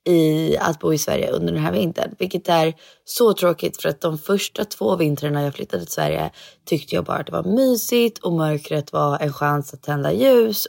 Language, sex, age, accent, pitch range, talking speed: Swedish, female, 20-39, native, 155-210 Hz, 215 wpm